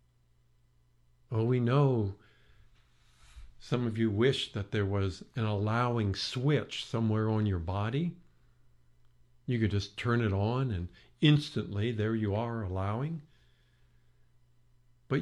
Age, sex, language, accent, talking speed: 50-69, male, English, American, 120 wpm